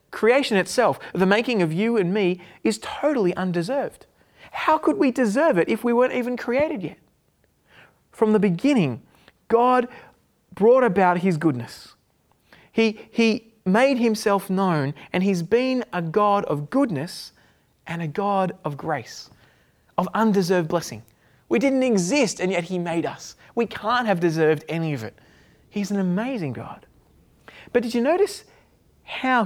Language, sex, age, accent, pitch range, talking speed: English, male, 30-49, Australian, 185-245 Hz, 150 wpm